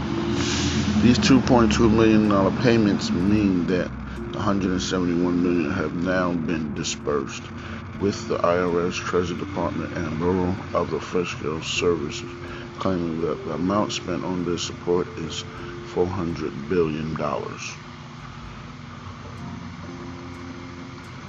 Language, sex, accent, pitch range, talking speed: English, male, American, 90-125 Hz, 115 wpm